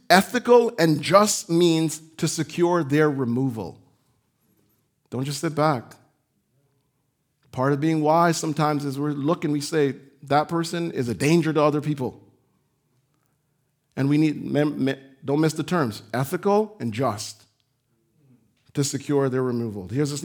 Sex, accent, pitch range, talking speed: male, American, 135-185 Hz, 145 wpm